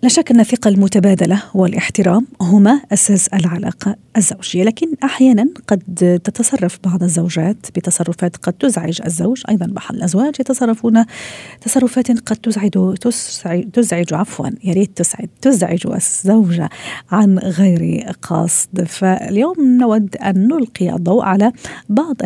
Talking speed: 115 wpm